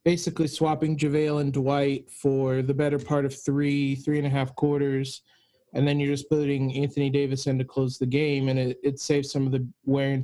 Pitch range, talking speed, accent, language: 135-160 Hz, 215 wpm, American, English